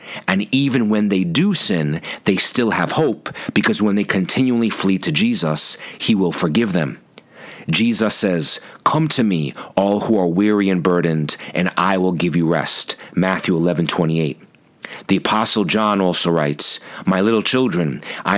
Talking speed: 165 wpm